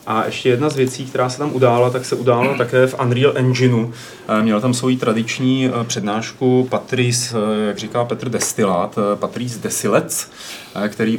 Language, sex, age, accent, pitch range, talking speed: Czech, male, 30-49, native, 105-125 Hz, 155 wpm